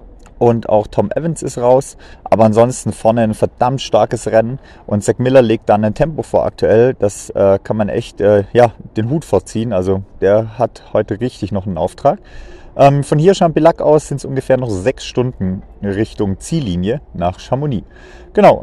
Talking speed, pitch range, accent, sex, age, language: 180 wpm, 110-145 Hz, German, male, 30-49, German